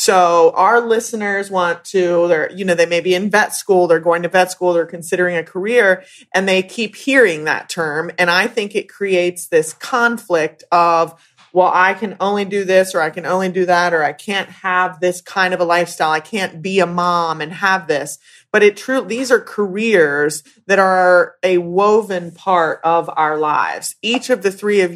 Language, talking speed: English, 205 wpm